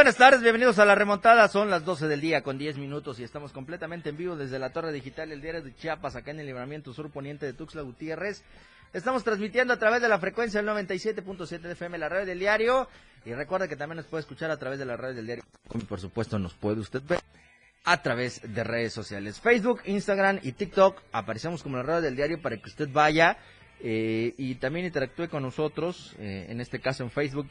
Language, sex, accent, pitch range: Spanish, male, Mexican, 120-195 Hz